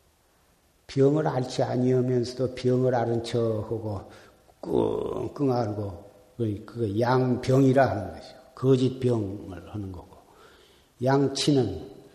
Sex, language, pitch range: male, Korean, 115-135 Hz